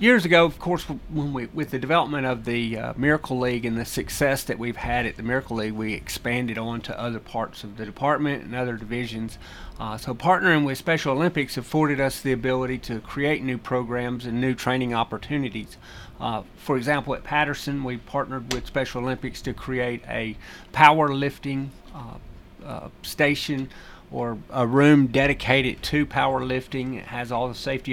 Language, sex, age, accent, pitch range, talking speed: English, male, 40-59, American, 120-140 Hz, 175 wpm